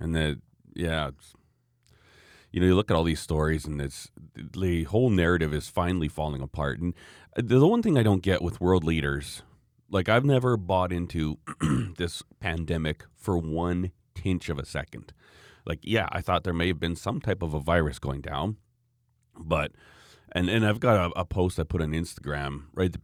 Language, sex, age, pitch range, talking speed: English, male, 40-59, 80-120 Hz, 195 wpm